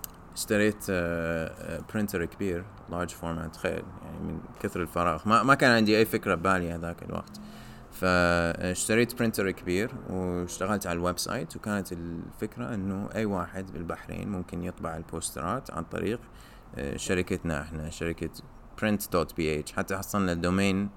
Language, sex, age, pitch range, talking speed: English, male, 20-39, 85-100 Hz, 125 wpm